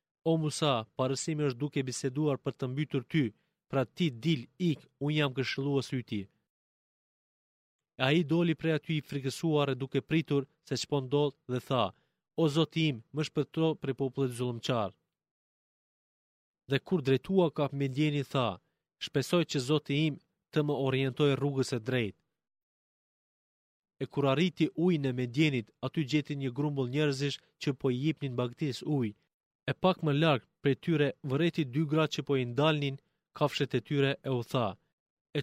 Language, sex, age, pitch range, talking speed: Greek, male, 30-49, 130-155 Hz, 155 wpm